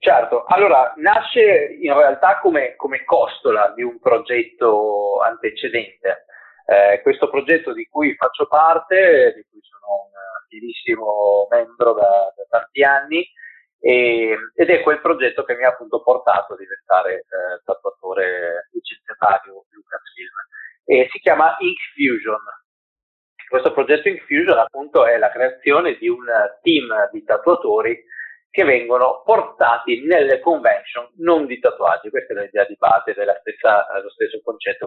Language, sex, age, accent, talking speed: Italian, male, 30-49, native, 140 wpm